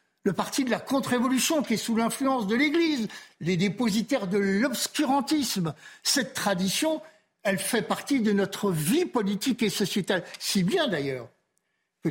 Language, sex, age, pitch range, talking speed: French, male, 60-79, 165-245 Hz, 155 wpm